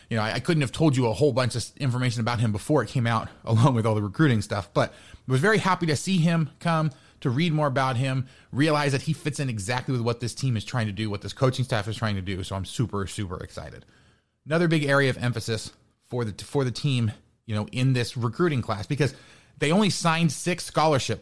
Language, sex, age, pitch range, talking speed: English, male, 30-49, 110-150 Hz, 245 wpm